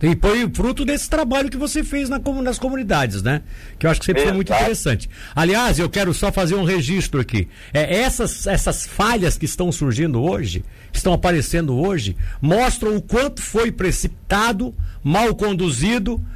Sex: male